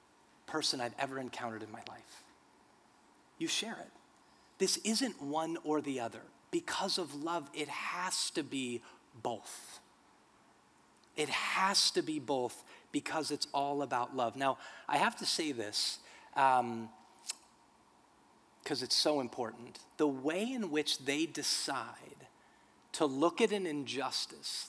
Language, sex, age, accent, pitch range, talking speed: English, male, 30-49, American, 135-170 Hz, 135 wpm